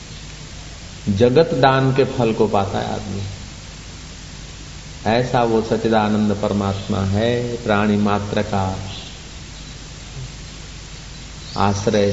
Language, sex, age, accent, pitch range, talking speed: Hindi, male, 50-69, native, 95-110 Hz, 85 wpm